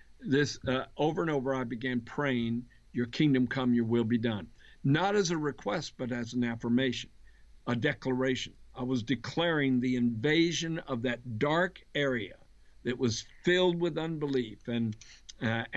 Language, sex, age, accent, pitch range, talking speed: English, male, 60-79, American, 120-145 Hz, 155 wpm